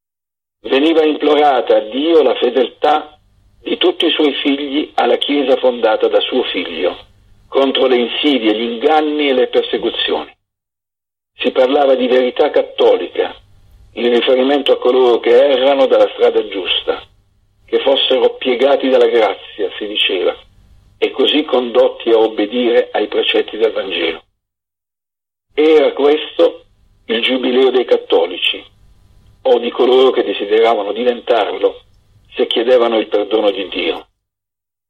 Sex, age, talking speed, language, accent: male, 50-69, 125 wpm, Italian, native